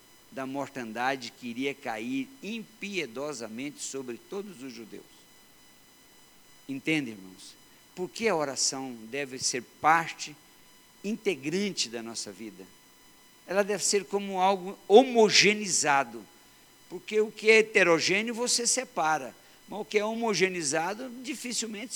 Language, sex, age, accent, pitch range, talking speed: Portuguese, male, 60-79, Brazilian, 125-210 Hz, 115 wpm